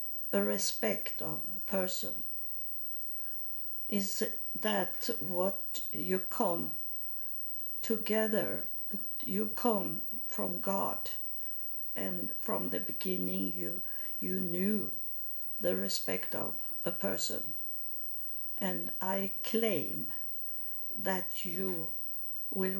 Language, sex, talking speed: English, female, 85 wpm